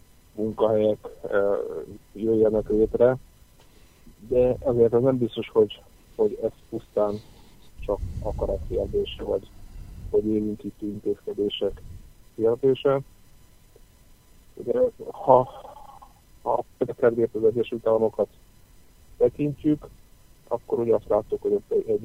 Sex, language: male, Hungarian